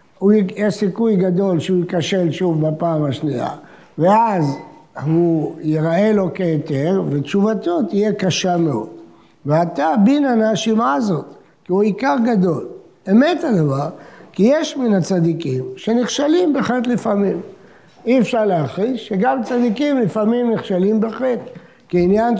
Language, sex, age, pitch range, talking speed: Hebrew, male, 60-79, 170-240 Hz, 115 wpm